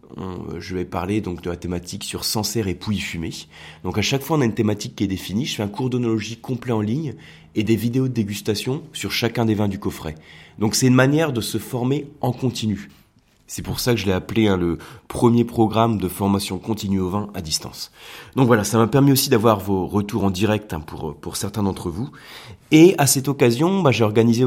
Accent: French